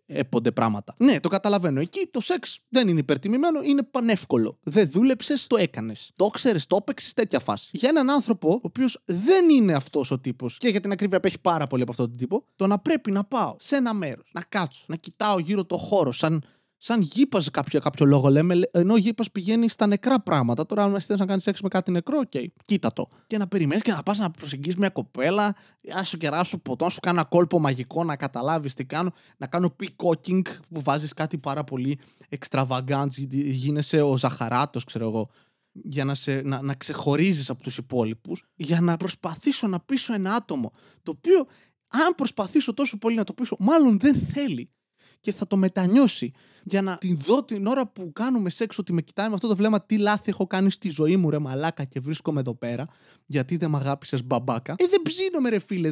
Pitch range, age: 145-215 Hz, 20-39